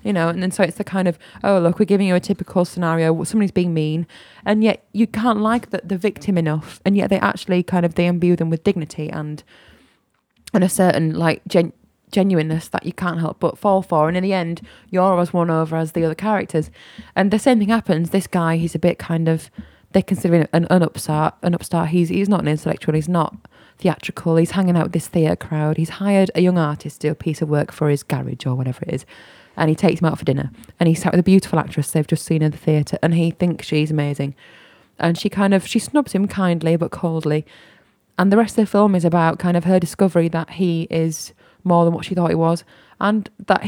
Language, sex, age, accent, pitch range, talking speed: English, female, 20-39, British, 165-195 Hz, 245 wpm